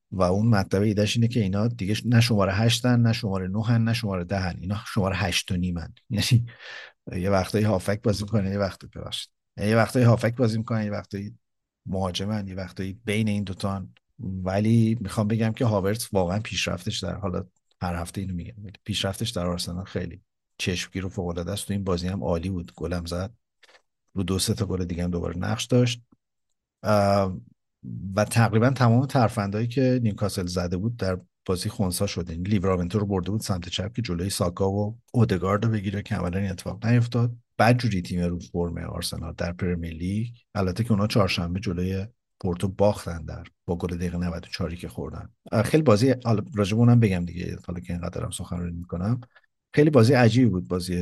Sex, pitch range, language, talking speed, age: male, 90-110 Hz, Persian, 175 wpm, 50-69